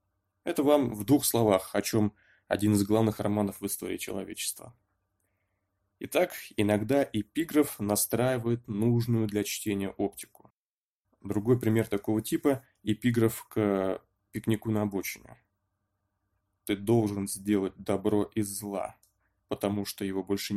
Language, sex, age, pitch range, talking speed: Russian, male, 20-39, 100-115 Hz, 120 wpm